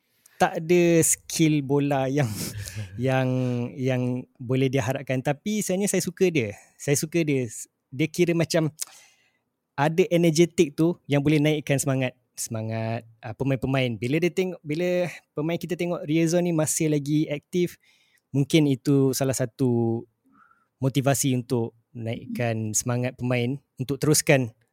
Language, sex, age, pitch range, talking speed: Malay, male, 20-39, 130-160 Hz, 125 wpm